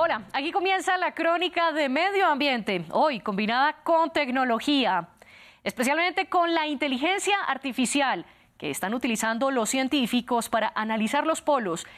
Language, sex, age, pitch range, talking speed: Spanish, female, 20-39, 225-300 Hz, 130 wpm